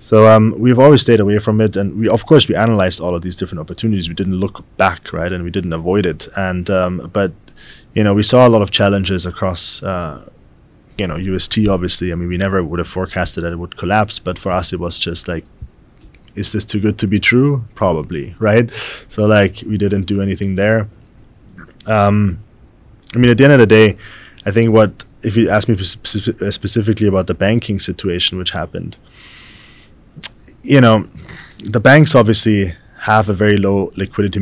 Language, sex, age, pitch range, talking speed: Vietnamese, male, 20-39, 95-110 Hz, 195 wpm